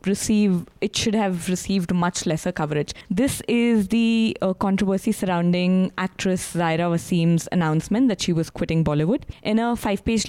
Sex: female